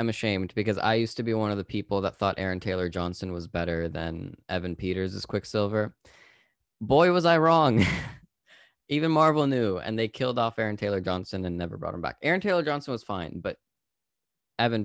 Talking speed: 195 wpm